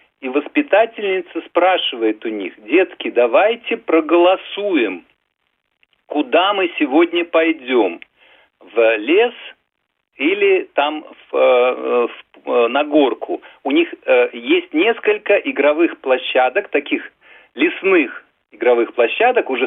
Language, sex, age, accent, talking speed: Russian, male, 40-59, native, 95 wpm